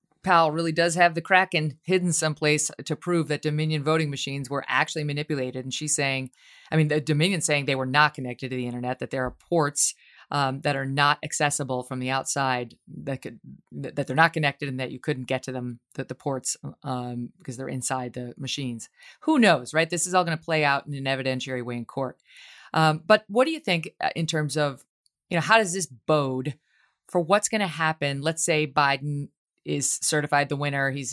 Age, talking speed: 30-49, 210 wpm